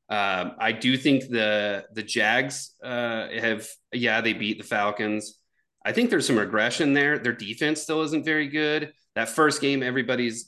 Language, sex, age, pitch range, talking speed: English, male, 30-49, 105-120 Hz, 170 wpm